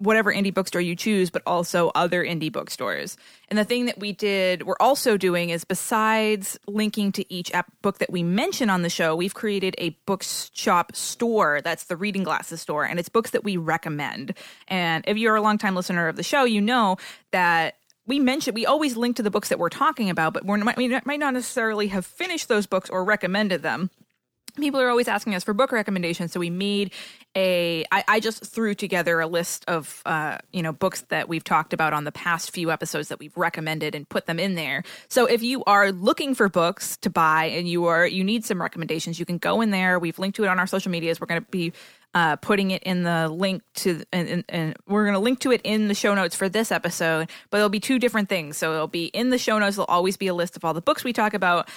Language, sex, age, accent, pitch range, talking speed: English, female, 20-39, American, 170-215 Hz, 235 wpm